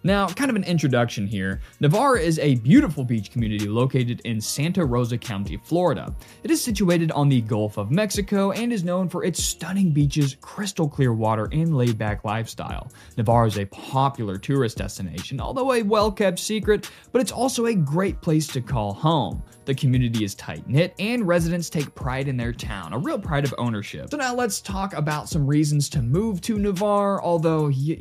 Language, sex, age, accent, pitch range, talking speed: English, male, 20-39, American, 120-185 Hz, 190 wpm